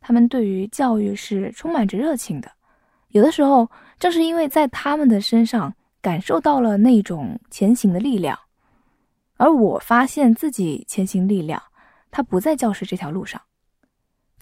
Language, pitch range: Chinese, 195-255 Hz